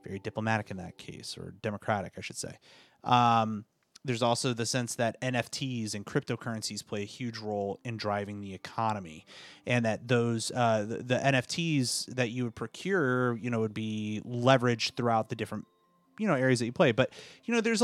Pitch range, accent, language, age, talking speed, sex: 110-140 Hz, American, English, 30-49, 190 wpm, male